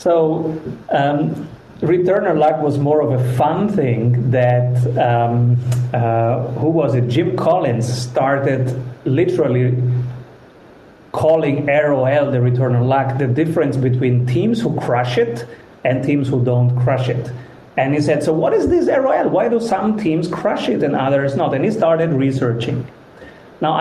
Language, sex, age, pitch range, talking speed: English, male, 40-59, 125-155 Hz, 155 wpm